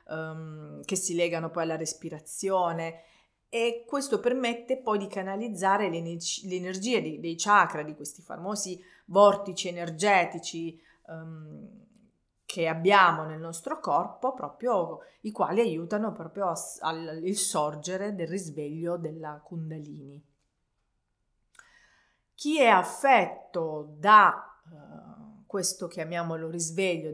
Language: Italian